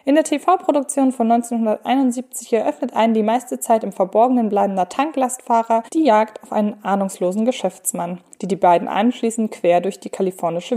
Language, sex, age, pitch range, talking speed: German, female, 20-39, 200-255 Hz, 155 wpm